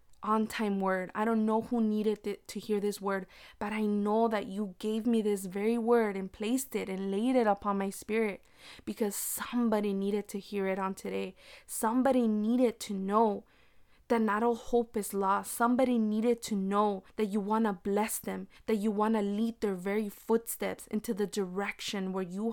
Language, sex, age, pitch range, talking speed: English, female, 20-39, 200-225 Hz, 190 wpm